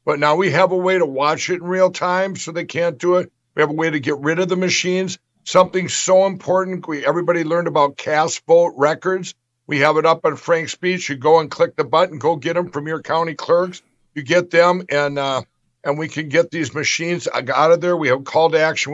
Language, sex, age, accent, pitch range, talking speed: English, male, 60-79, American, 150-190 Hz, 240 wpm